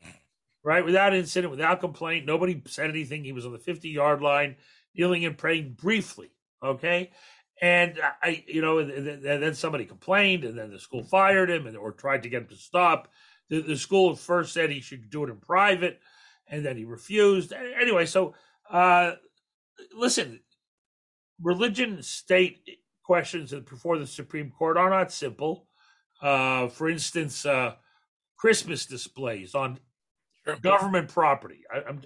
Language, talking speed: English, 150 wpm